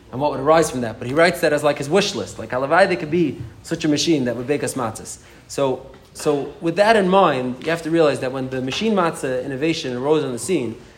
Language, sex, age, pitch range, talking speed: English, male, 30-49, 135-180 Hz, 255 wpm